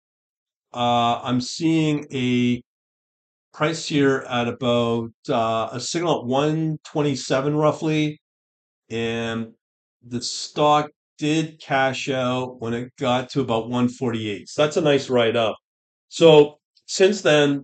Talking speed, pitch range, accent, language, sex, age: 135 wpm, 120-150 Hz, American, English, male, 40-59